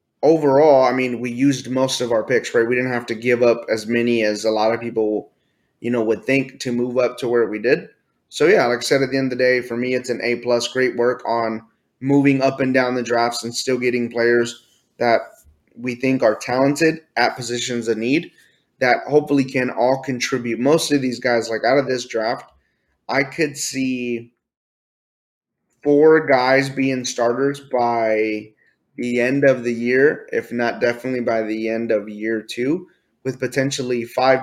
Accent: American